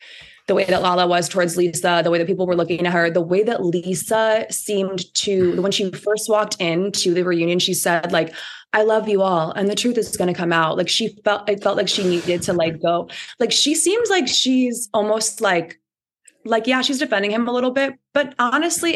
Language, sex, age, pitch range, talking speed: English, female, 20-39, 180-220 Hz, 225 wpm